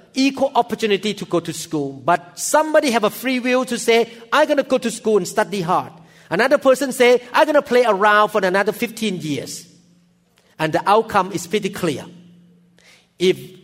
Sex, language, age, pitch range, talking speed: male, English, 50-69, 170-235 Hz, 185 wpm